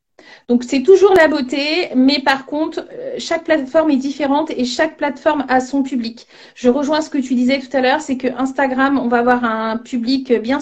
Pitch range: 240-280 Hz